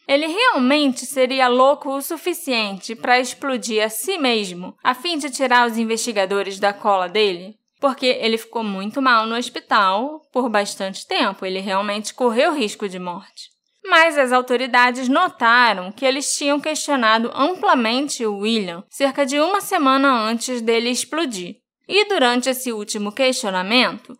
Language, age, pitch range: Portuguese, 10-29, 220-290 Hz